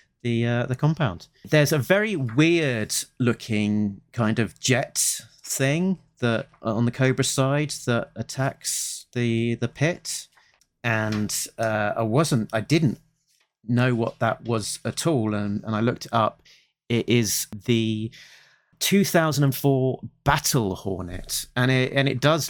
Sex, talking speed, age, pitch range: male, 135 wpm, 30-49, 100-130 Hz